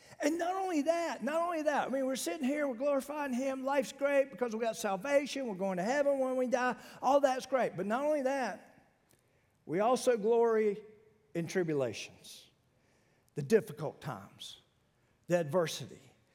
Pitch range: 205-270 Hz